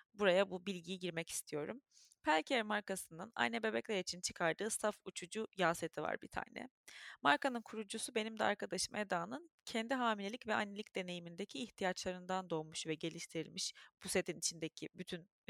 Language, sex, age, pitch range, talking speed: Turkish, female, 30-49, 180-235 Hz, 145 wpm